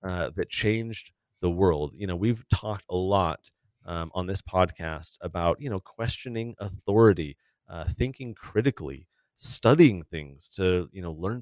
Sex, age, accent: male, 30-49, American